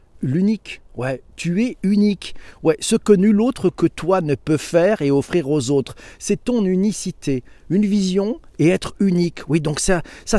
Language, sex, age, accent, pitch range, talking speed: French, male, 40-59, French, 130-190 Hz, 180 wpm